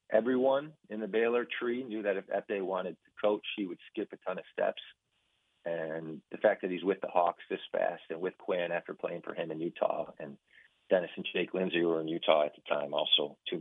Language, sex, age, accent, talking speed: English, male, 40-59, American, 225 wpm